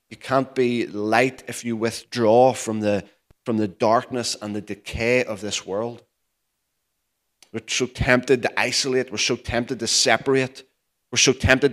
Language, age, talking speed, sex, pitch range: English, 30-49, 160 wpm, male, 110-125 Hz